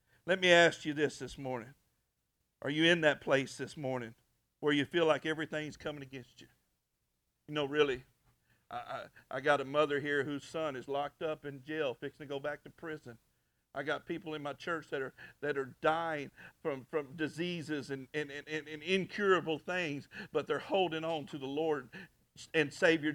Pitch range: 150-195 Hz